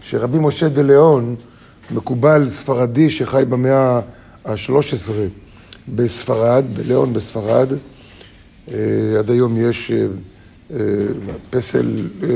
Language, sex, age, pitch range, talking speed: Hebrew, male, 50-69, 110-145 Hz, 75 wpm